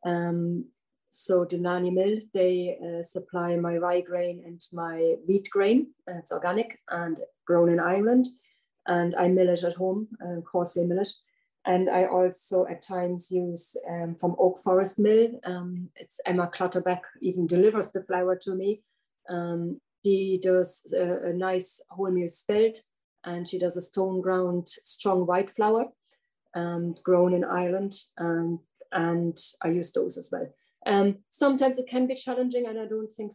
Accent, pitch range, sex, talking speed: German, 175-200 Hz, female, 165 wpm